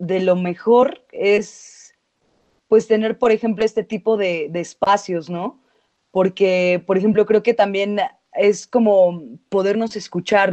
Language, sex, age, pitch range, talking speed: Spanish, female, 20-39, 180-210 Hz, 135 wpm